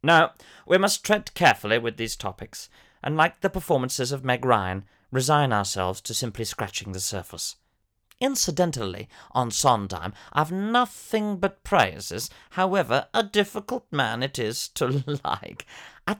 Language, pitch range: English, 110-165 Hz